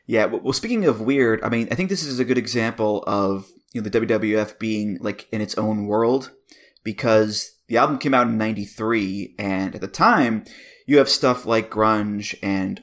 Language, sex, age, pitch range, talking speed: English, male, 20-39, 105-120 Hz, 195 wpm